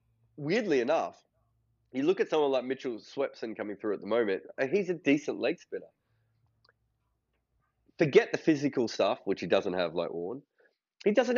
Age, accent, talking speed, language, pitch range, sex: 30-49, Australian, 165 wpm, English, 115-160 Hz, male